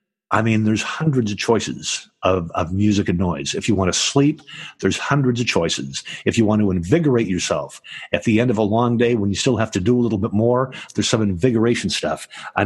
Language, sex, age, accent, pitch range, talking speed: English, male, 50-69, American, 100-130 Hz, 230 wpm